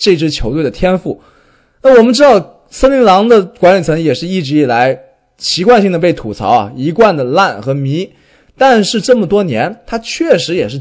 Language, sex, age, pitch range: Chinese, male, 20-39, 155-240 Hz